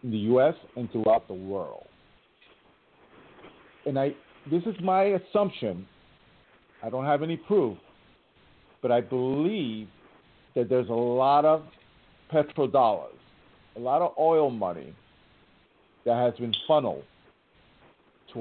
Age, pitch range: 50-69, 125-185 Hz